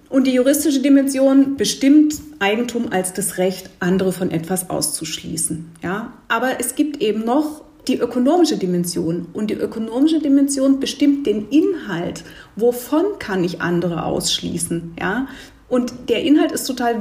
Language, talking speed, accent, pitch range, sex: German, 140 wpm, German, 185-265 Hz, female